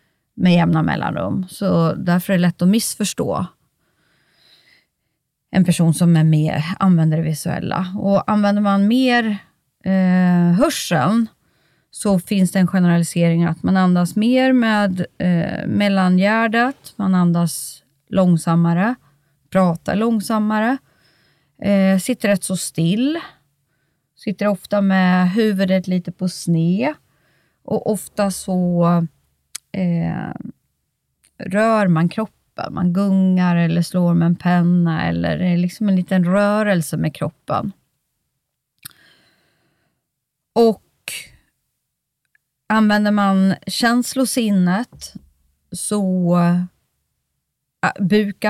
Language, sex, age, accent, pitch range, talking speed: English, female, 30-49, Swedish, 175-205 Hz, 95 wpm